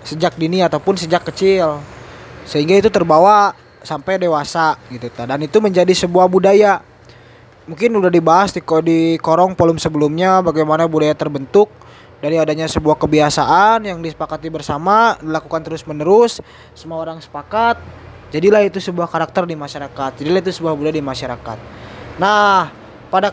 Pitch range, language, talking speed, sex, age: 155-205 Hz, Malay, 135 wpm, male, 20-39